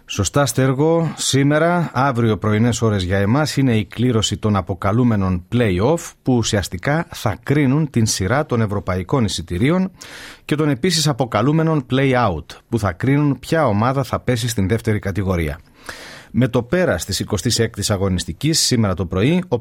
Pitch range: 105-140 Hz